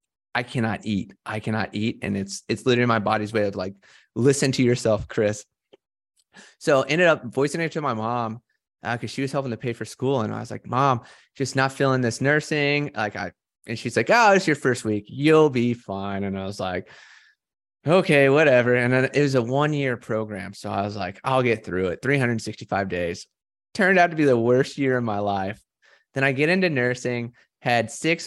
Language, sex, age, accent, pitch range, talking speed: English, male, 20-39, American, 110-145 Hz, 215 wpm